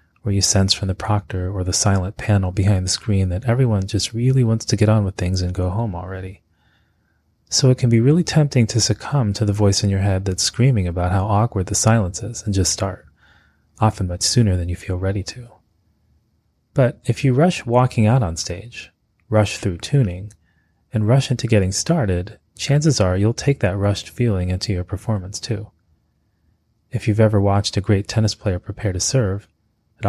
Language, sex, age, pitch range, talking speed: English, male, 30-49, 95-115 Hz, 195 wpm